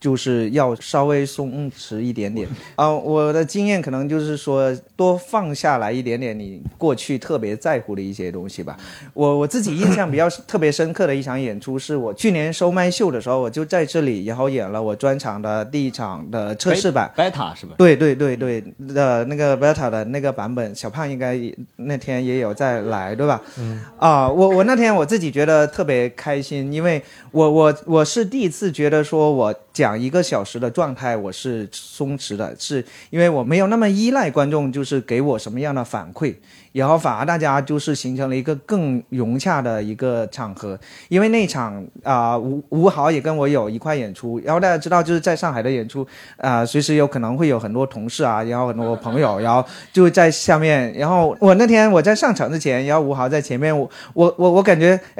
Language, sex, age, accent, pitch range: Chinese, male, 20-39, native, 120-160 Hz